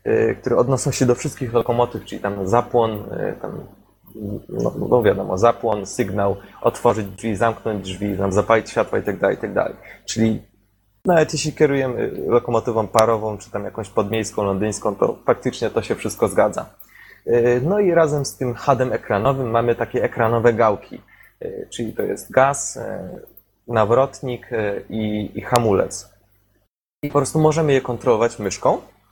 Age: 20-39